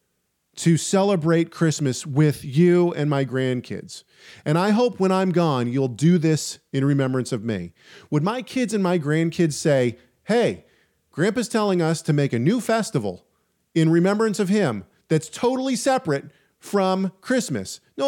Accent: American